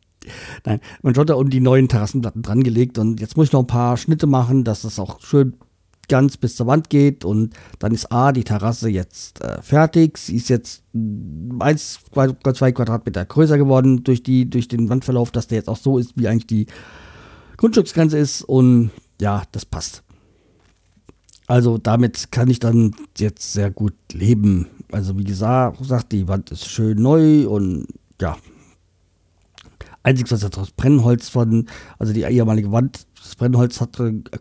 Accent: German